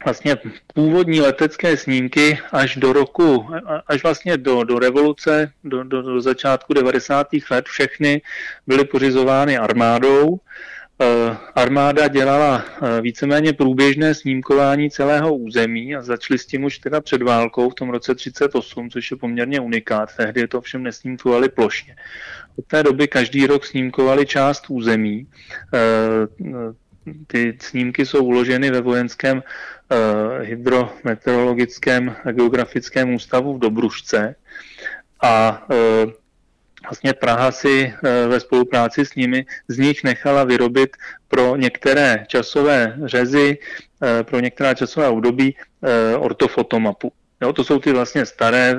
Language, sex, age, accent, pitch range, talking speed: Czech, male, 30-49, native, 120-140 Hz, 130 wpm